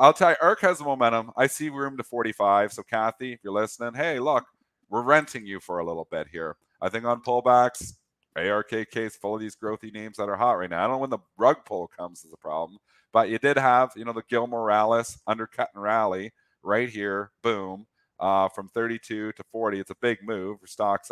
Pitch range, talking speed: 95-120 Hz, 225 wpm